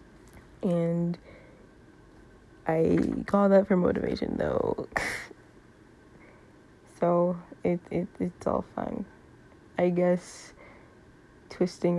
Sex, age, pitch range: female, 20-39, 175-190 Hz